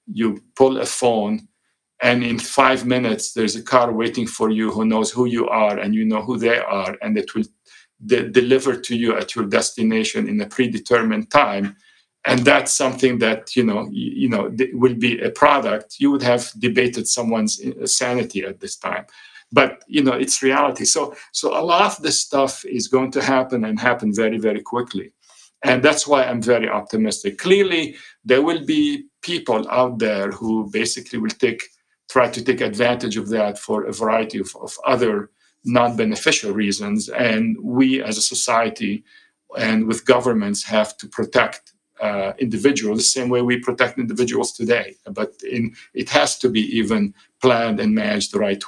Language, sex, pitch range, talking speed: English, male, 110-150 Hz, 180 wpm